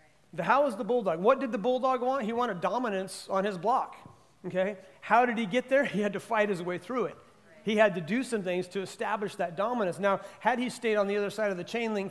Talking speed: 260 wpm